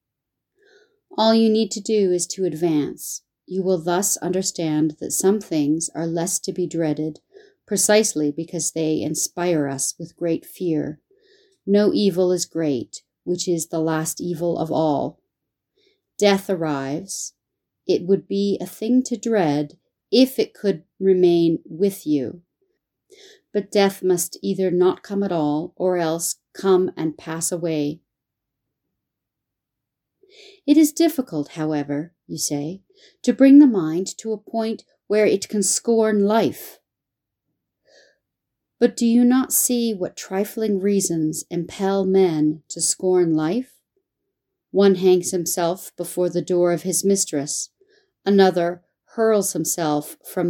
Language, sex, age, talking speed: English, female, 40-59, 135 wpm